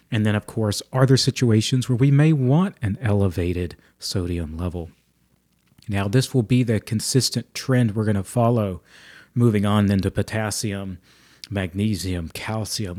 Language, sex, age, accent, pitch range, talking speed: English, male, 40-59, American, 100-125 Hz, 155 wpm